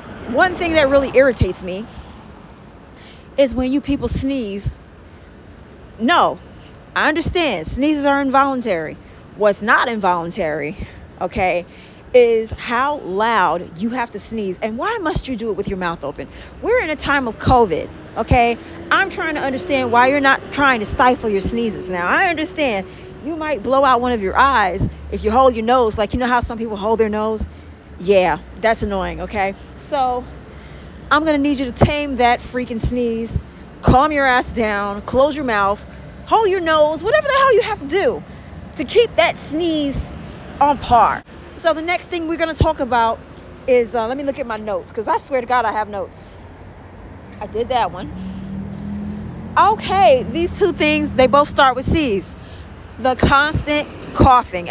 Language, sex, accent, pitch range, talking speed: English, female, American, 220-290 Hz, 175 wpm